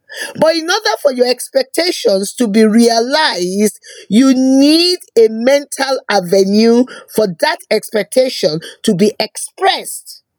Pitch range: 210-315 Hz